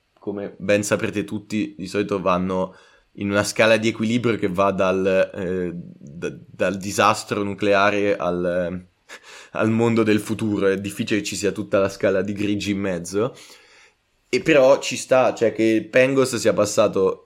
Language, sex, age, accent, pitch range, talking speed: Italian, male, 20-39, native, 100-115 Hz, 165 wpm